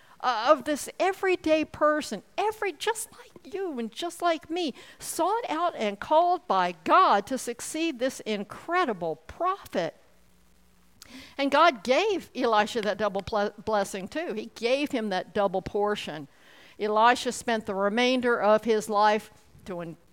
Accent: American